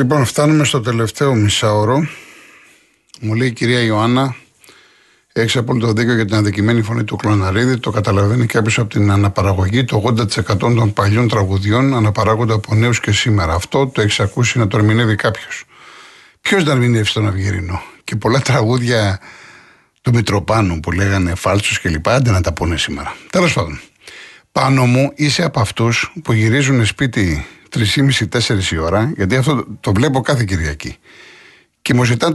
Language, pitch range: Greek, 105-130 Hz